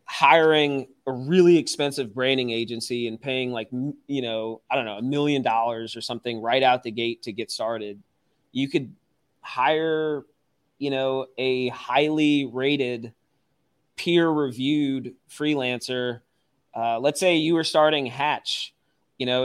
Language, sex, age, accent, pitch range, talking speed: English, male, 20-39, American, 120-145 Hz, 140 wpm